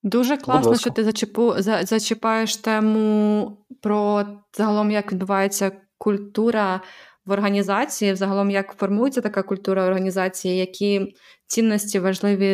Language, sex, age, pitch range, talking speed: Ukrainian, female, 20-39, 195-220 Hz, 120 wpm